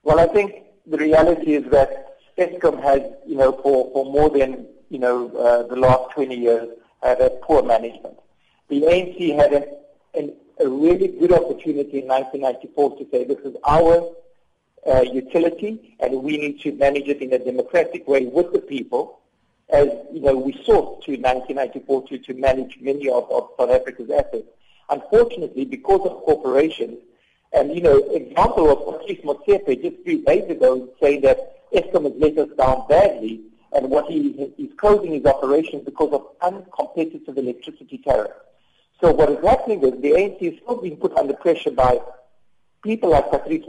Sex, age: male, 50-69